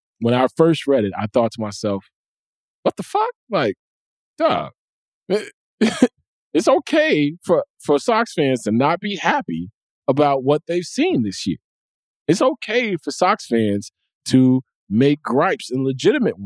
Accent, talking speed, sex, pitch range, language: American, 145 wpm, male, 120-180 Hz, English